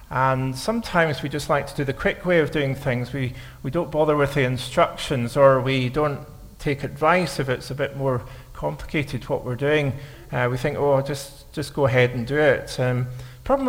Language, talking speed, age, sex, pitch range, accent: English, 205 wpm, 30-49, male, 130-155 Hz, British